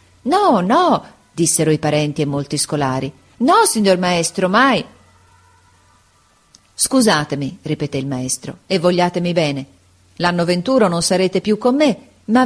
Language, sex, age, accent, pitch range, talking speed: Italian, female, 40-59, native, 150-205 Hz, 130 wpm